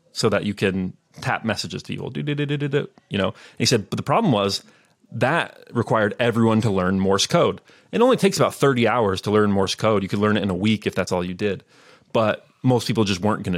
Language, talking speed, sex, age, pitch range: English, 230 wpm, male, 30-49, 100-115 Hz